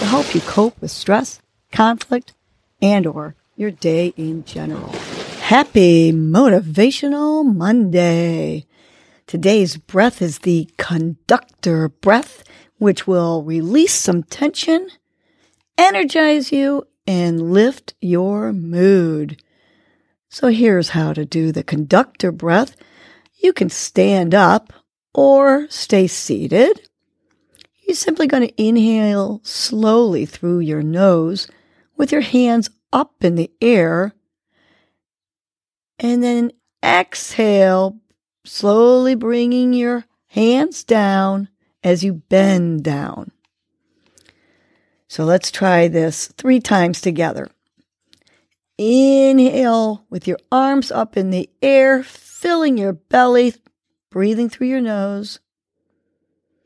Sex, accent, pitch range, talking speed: female, American, 175-255 Hz, 105 wpm